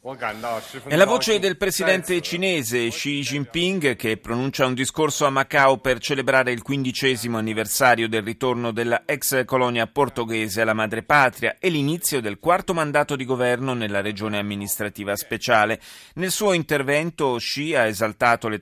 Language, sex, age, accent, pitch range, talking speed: Italian, male, 30-49, native, 105-135 Hz, 145 wpm